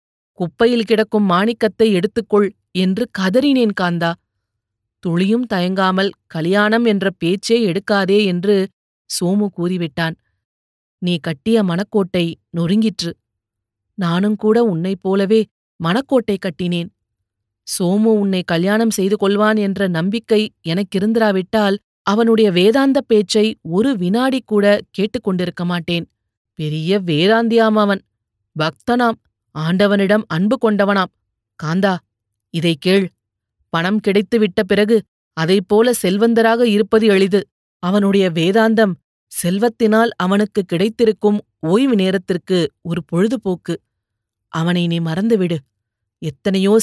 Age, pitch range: 30-49, 170-215 Hz